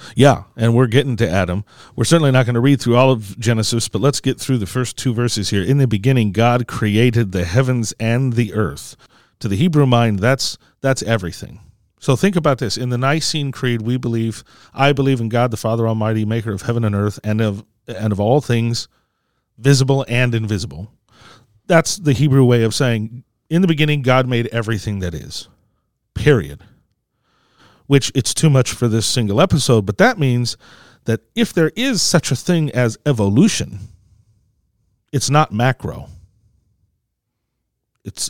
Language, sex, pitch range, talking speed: English, male, 110-135 Hz, 175 wpm